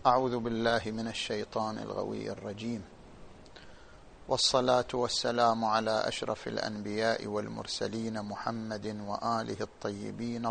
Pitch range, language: 105-120 Hz, Arabic